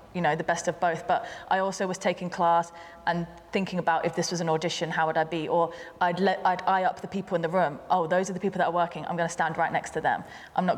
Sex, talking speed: female, 295 wpm